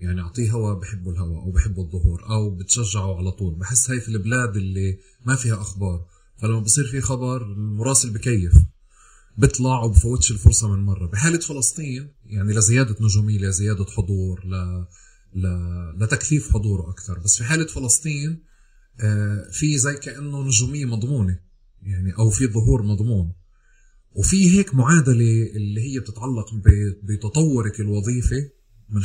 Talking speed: 135 wpm